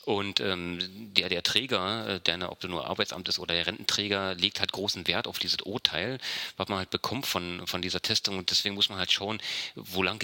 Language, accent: German, German